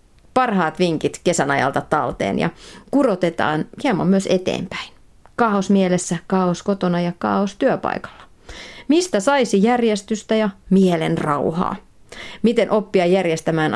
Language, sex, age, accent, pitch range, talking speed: Finnish, female, 30-49, native, 165-215 Hz, 115 wpm